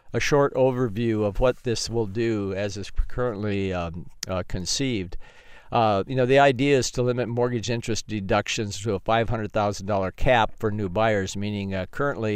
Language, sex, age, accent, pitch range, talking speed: English, male, 50-69, American, 105-125 Hz, 170 wpm